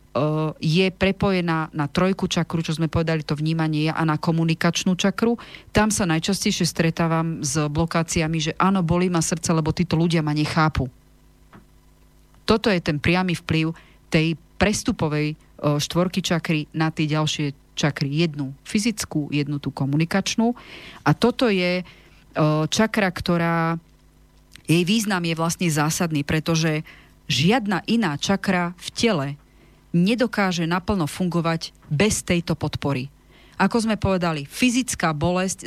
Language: Slovak